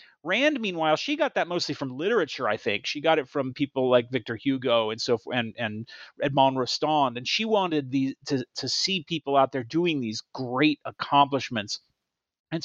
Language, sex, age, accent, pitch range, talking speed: English, male, 40-59, American, 130-170 Hz, 190 wpm